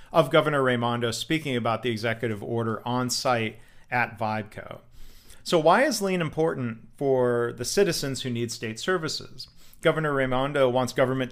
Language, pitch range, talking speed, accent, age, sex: English, 115-150 Hz, 150 wpm, American, 40-59, male